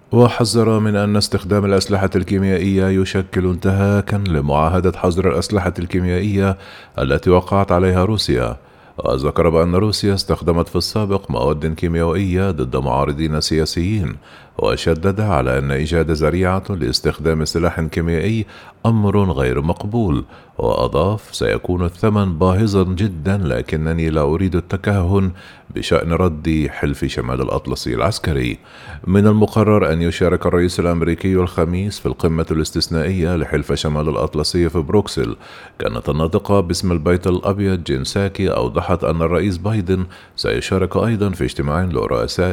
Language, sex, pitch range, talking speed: Arabic, male, 80-100 Hz, 115 wpm